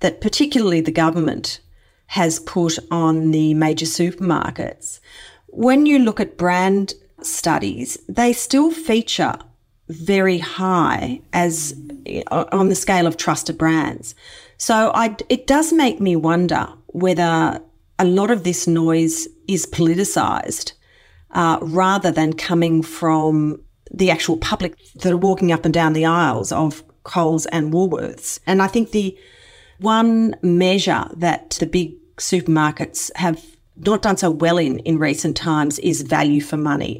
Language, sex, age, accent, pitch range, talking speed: English, female, 40-59, Australian, 160-190 Hz, 140 wpm